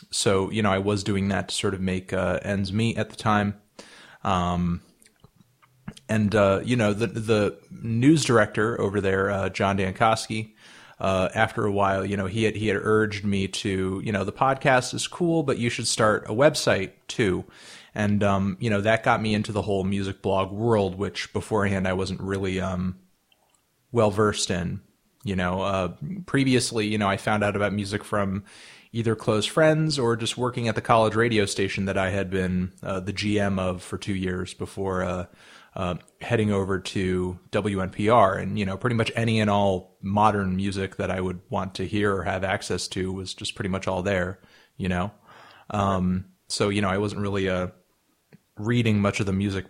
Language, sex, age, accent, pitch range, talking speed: English, male, 30-49, American, 95-110 Hz, 195 wpm